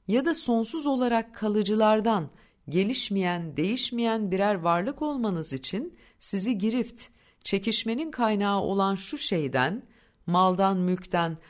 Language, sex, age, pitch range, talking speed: Turkish, female, 50-69, 165-225 Hz, 105 wpm